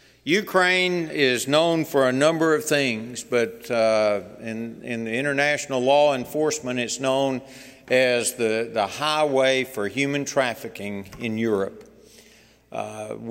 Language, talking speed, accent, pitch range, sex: English, 125 wpm, American, 115-145 Hz, male